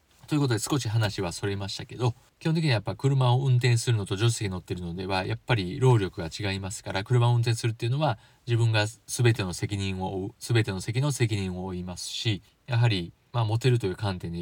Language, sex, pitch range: Japanese, male, 100-125 Hz